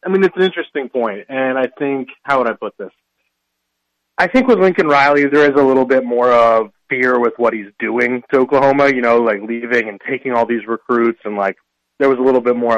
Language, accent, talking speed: English, American, 235 wpm